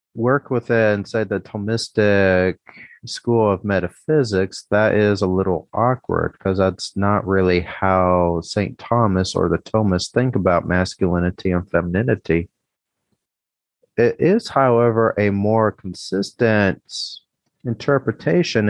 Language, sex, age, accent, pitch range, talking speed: English, male, 30-49, American, 95-115 Hz, 110 wpm